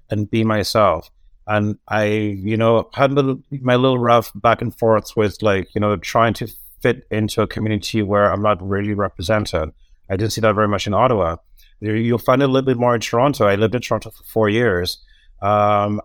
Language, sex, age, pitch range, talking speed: English, male, 30-49, 105-125 Hz, 200 wpm